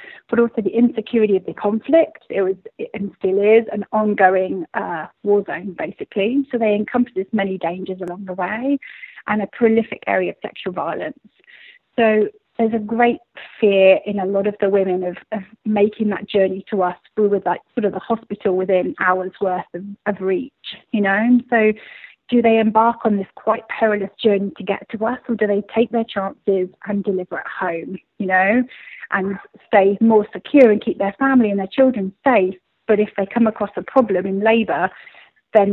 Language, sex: English, female